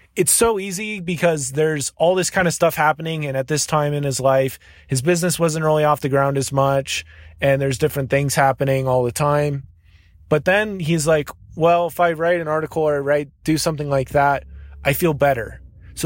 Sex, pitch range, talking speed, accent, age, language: male, 135-170 Hz, 205 wpm, American, 20-39, English